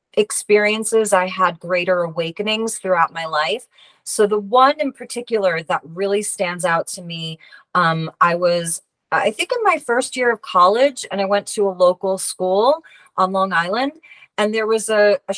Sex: female